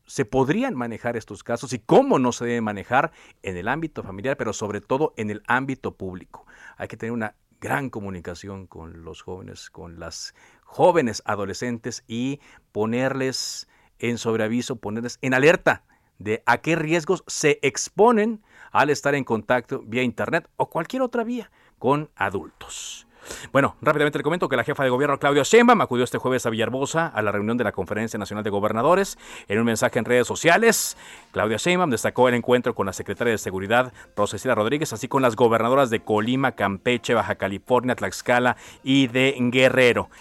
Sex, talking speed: male, 175 wpm